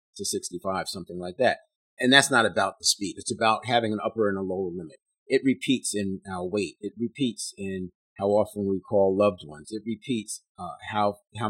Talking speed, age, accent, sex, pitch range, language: 205 wpm, 40-59, American, male, 95-115 Hz, English